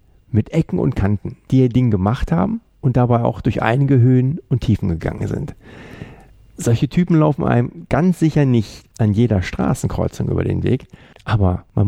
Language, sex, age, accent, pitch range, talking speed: German, male, 50-69, German, 100-130 Hz, 170 wpm